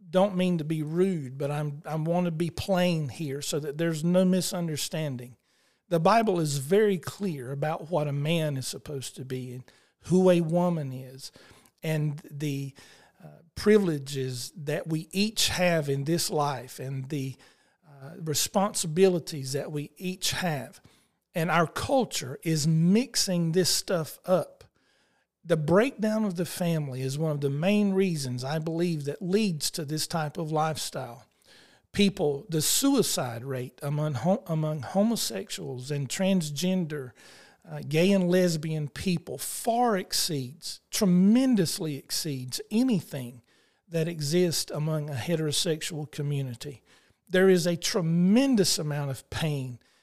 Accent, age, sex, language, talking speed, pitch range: American, 50-69, male, English, 140 wpm, 145-180 Hz